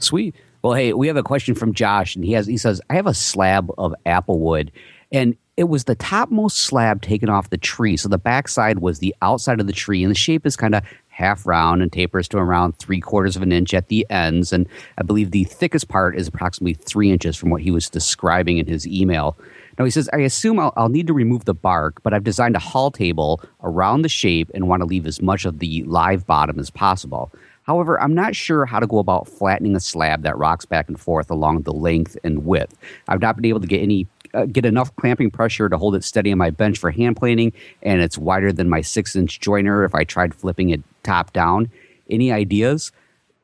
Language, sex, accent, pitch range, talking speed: English, male, American, 90-115 Hz, 235 wpm